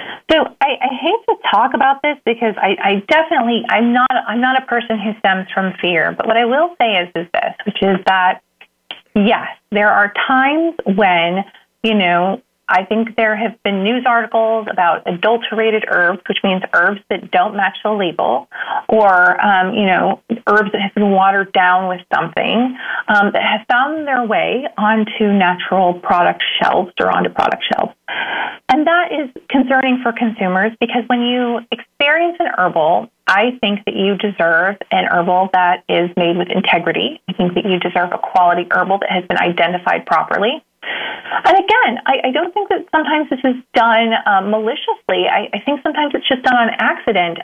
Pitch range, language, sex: 190-255 Hz, English, female